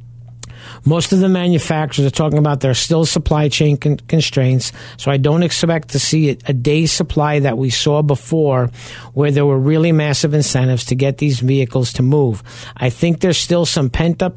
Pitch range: 120-160 Hz